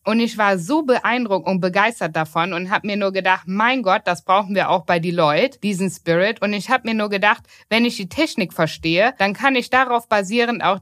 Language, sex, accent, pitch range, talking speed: German, female, German, 185-240 Hz, 220 wpm